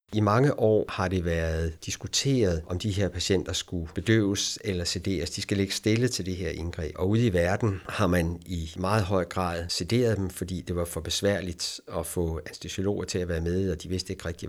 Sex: male